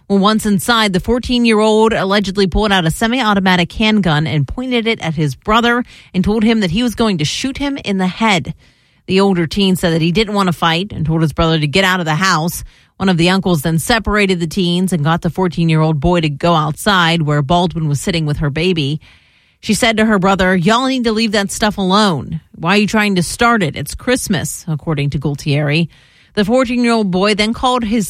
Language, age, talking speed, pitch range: English, 40-59, 220 wpm, 160-215 Hz